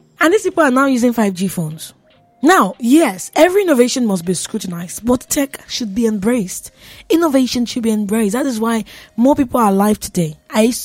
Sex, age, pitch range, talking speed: female, 20-39, 190-250 Hz, 185 wpm